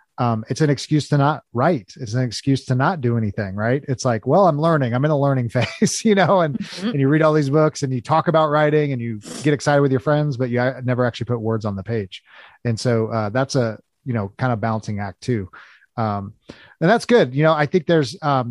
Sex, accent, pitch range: male, American, 115-150 Hz